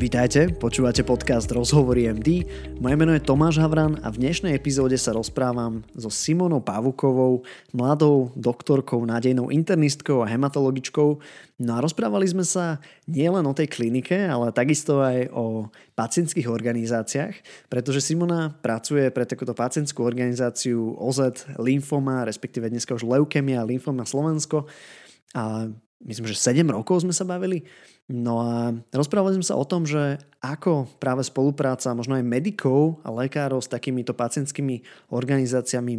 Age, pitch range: 20-39, 120-150 Hz